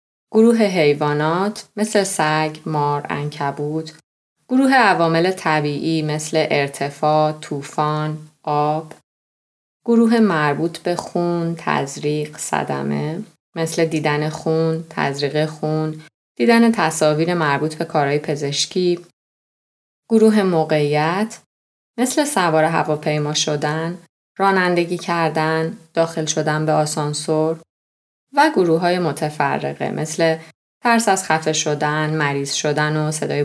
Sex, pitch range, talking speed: female, 150-195 Hz, 100 wpm